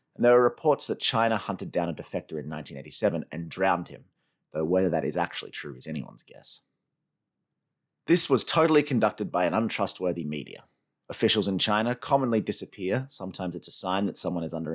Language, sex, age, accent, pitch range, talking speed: English, male, 30-49, Australian, 85-130 Hz, 185 wpm